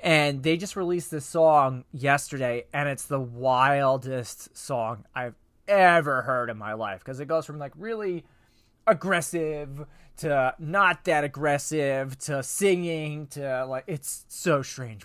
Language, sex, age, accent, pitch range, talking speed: English, male, 20-39, American, 130-185 Hz, 145 wpm